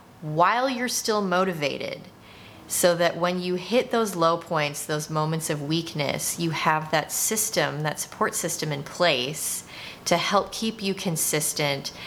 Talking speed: 150 wpm